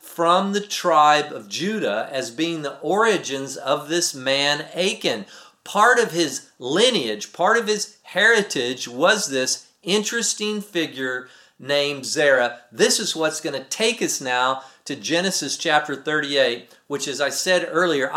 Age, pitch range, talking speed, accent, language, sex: 40-59, 140-205 Hz, 145 wpm, American, English, male